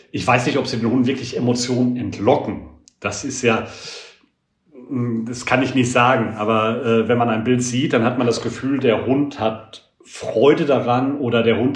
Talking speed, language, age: 195 wpm, German, 40-59